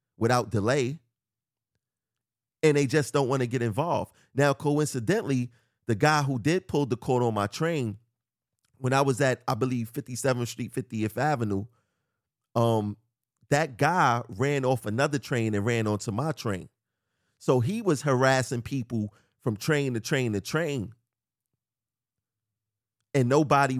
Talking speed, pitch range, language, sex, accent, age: 145 wpm, 115-145 Hz, English, male, American, 30-49